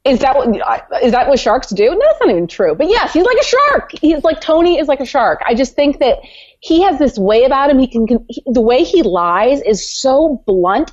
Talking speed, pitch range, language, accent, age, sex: 260 wpm, 215-305 Hz, English, American, 30-49, female